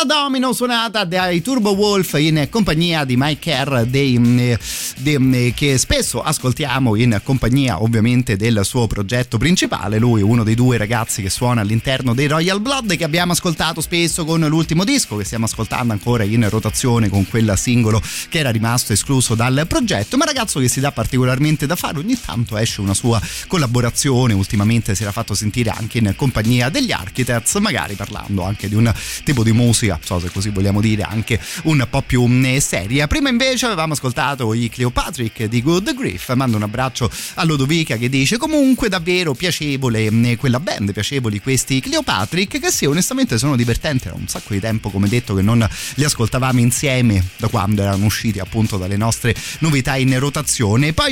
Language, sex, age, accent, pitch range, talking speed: Italian, male, 30-49, native, 110-155 Hz, 175 wpm